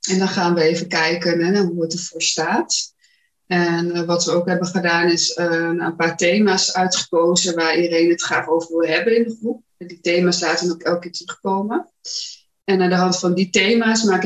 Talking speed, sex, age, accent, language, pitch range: 215 wpm, female, 20-39, Dutch, Dutch, 170-195 Hz